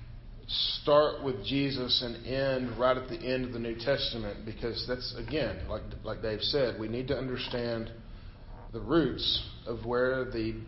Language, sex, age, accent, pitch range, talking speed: English, male, 40-59, American, 105-130 Hz, 165 wpm